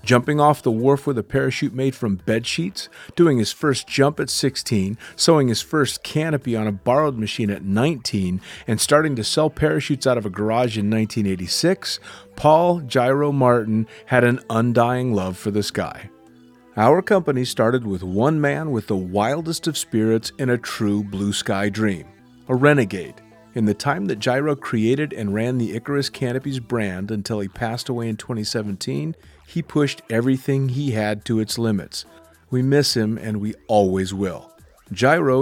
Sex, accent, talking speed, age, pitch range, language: male, American, 170 wpm, 40-59, 105-135 Hz, English